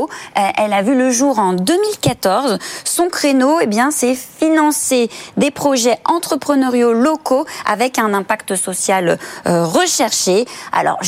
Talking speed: 125 wpm